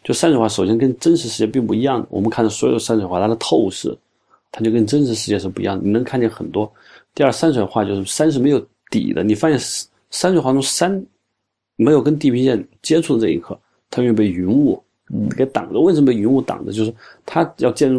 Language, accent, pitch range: Chinese, native, 105-145 Hz